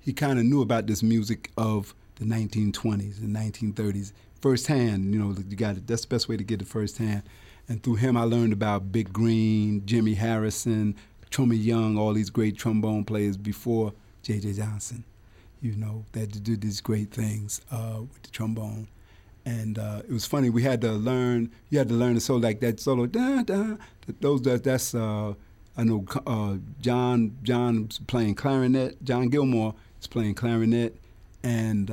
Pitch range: 105-120 Hz